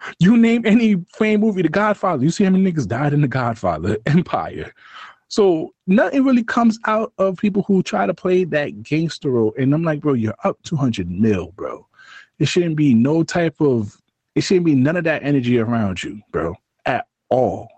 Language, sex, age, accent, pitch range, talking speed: English, male, 20-39, American, 120-180 Hz, 195 wpm